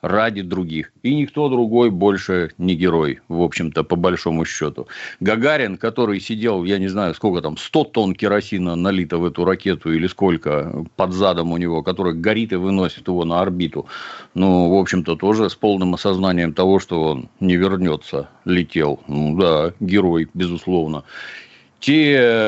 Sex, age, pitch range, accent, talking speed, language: male, 50-69, 90-105 Hz, native, 160 wpm, Russian